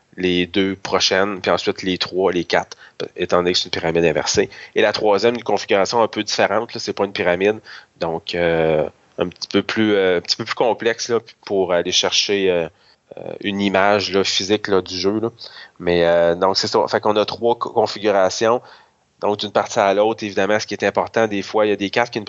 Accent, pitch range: Canadian, 95-115 Hz